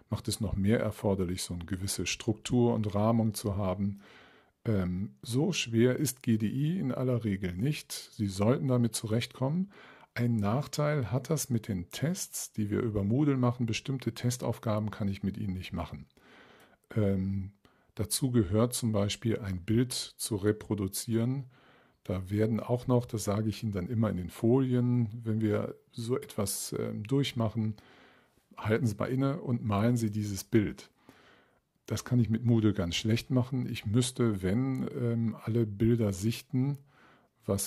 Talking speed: 155 wpm